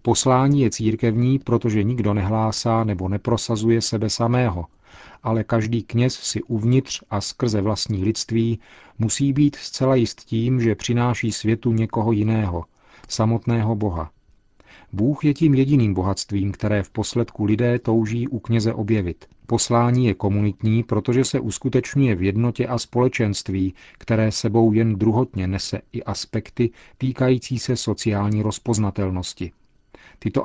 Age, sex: 40-59, male